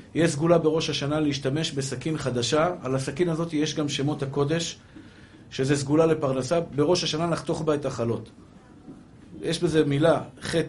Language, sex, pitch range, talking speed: Hebrew, male, 135-165 Hz, 150 wpm